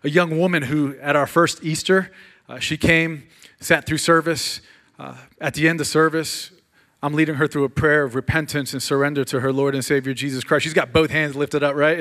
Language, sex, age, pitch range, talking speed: English, male, 30-49, 140-170 Hz, 220 wpm